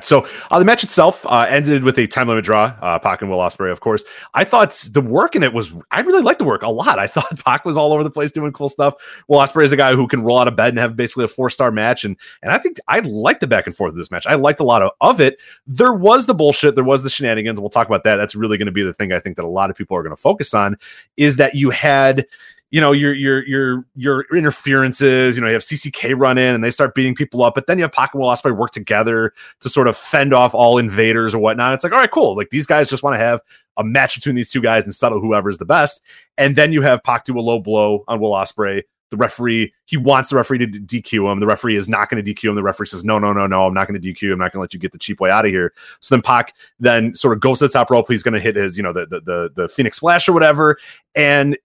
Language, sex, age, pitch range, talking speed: English, male, 30-49, 105-140 Hz, 300 wpm